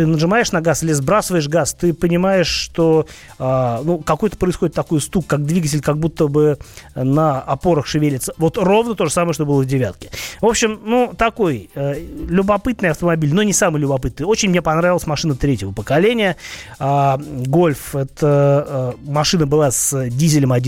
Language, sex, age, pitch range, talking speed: Russian, male, 30-49, 140-175 Hz, 165 wpm